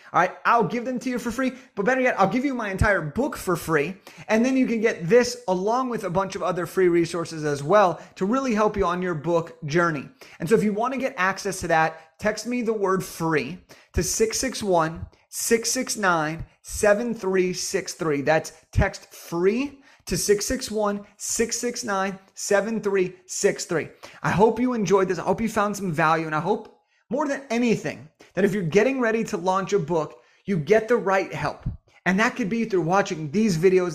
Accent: American